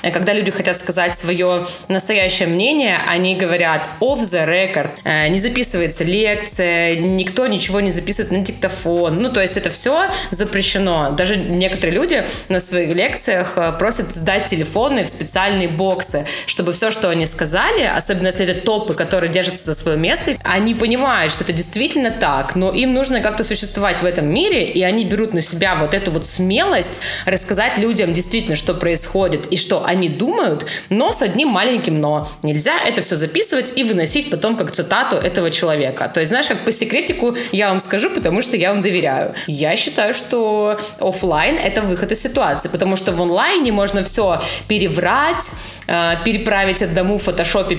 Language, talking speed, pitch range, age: Russian, 170 wpm, 175-215 Hz, 20-39